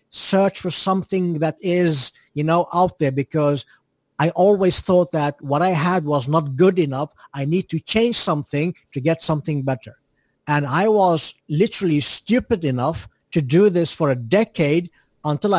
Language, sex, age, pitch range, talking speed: English, male, 60-79, 140-180 Hz, 165 wpm